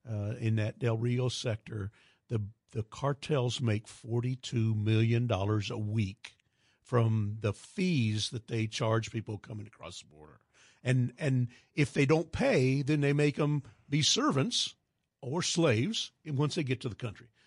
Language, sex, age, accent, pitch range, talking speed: English, male, 50-69, American, 115-145 Hz, 155 wpm